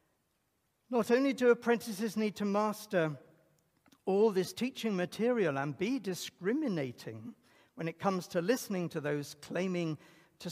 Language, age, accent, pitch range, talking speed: English, 60-79, British, 170-230 Hz, 130 wpm